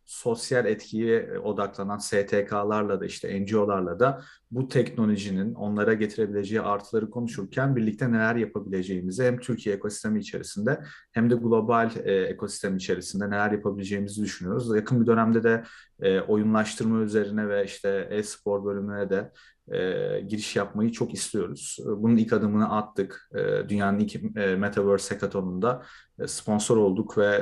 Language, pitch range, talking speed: Turkish, 100-115 Hz, 125 wpm